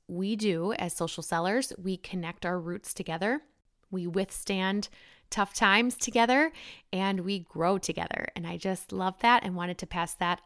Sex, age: female, 20-39